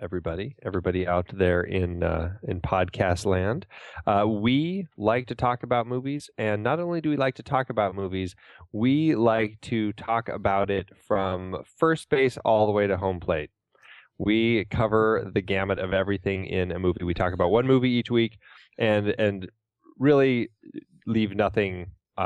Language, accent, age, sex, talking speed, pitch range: English, American, 20-39, male, 165 wpm, 95-120 Hz